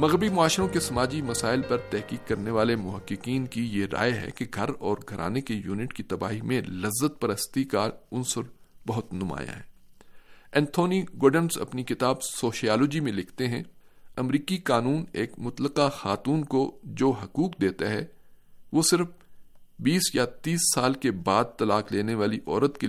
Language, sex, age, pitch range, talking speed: Urdu, male, 50-69, 115-150 Hz, 160 wpm